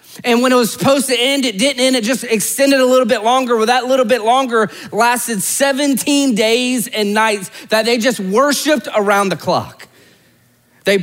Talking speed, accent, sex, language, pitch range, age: 190 wpm, American, male, English, 185-255 Hz, 30-49